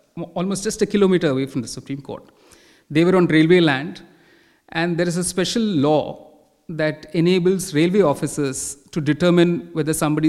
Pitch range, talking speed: 150-190 Hz, 165 wpm